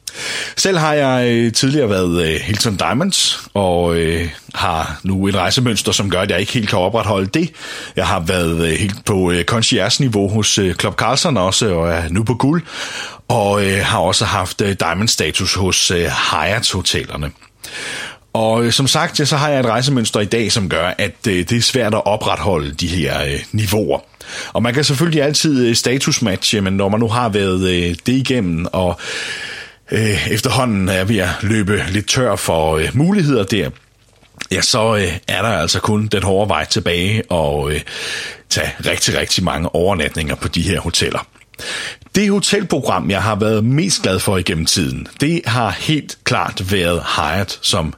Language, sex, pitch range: Danish, male, 90-125 Hz